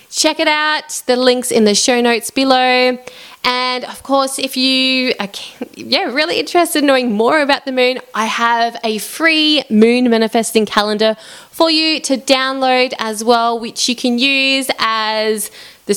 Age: 20-39